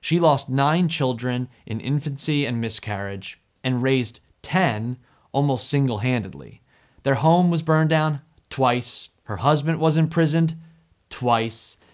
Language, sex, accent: English, male, American